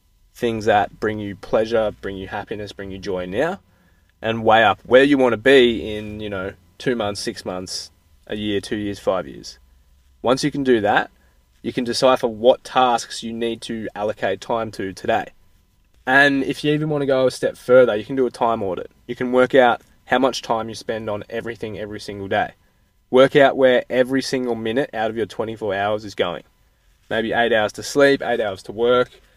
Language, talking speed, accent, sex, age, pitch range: English, 210 wpm, Australian, male, 20-39, 100-130 Hz